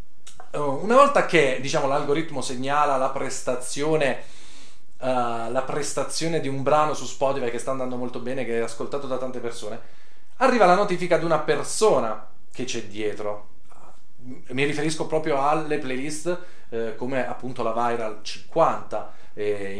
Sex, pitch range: male, 130-180 Hz